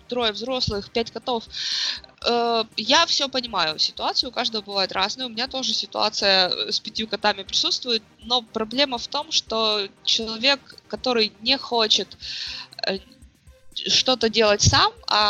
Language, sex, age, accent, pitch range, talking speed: Russian, female, 20-39, native, 205-255 Hz, 130 wpm